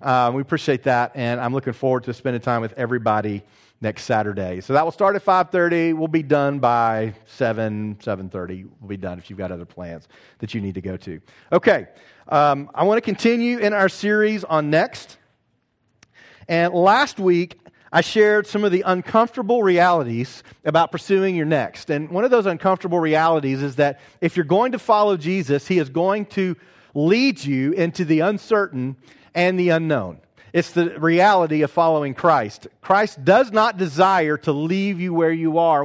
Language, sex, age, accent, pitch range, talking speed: English, male, 40-59, American, 135-190 Hz, 180 wpm